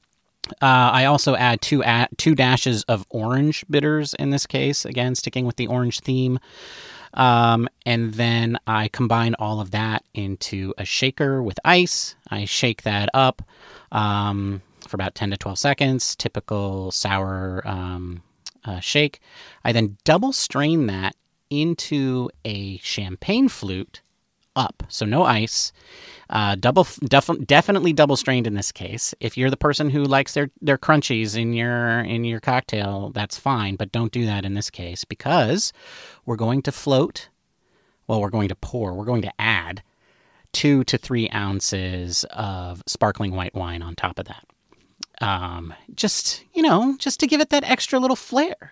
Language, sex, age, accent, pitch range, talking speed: English, male, 30-49, American, 100-140 Hz, 165 wpm